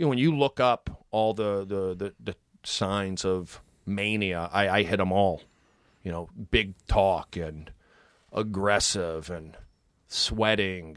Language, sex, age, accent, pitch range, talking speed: English, male, 30-49, American, 95-145 Hz, 150 wpm